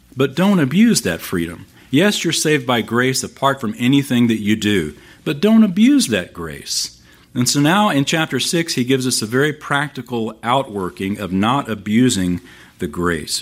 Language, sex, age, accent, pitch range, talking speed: English, male, 50-69, American, 90-125 Hz, 175 wpm